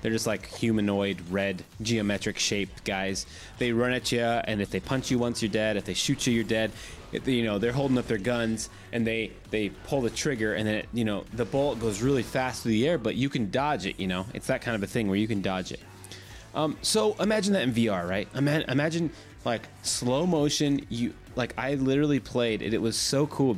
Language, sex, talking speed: English, male, 230 wpm